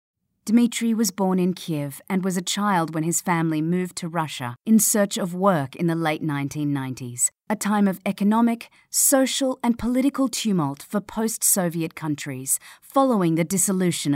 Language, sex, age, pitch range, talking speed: English, female, 40-59, 150-220 Hz, 155 wpm